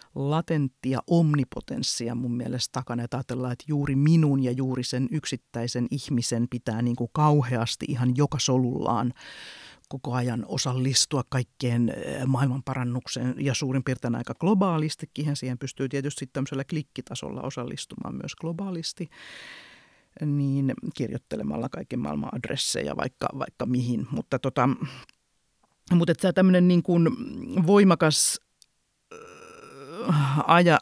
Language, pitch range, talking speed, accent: Finnish, 125-165 Hz, 115 wpm, native